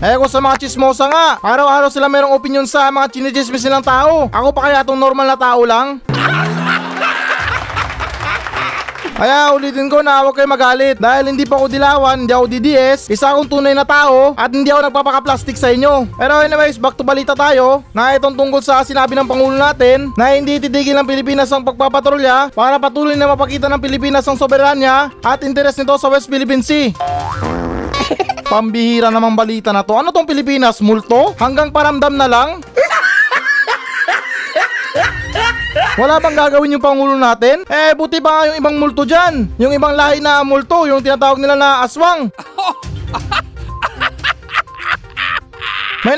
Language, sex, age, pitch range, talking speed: Filipino, male, 20-39, 260-285 Hz, 155 wpm